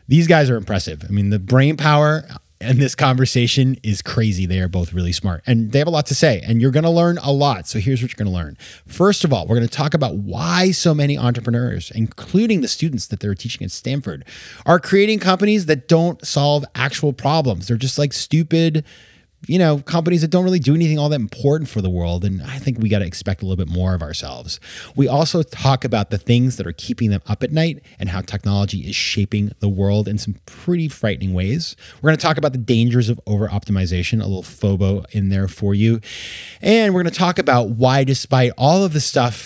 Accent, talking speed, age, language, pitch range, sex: American, 225 wpm, 30-49, English, 100-150 Hz, male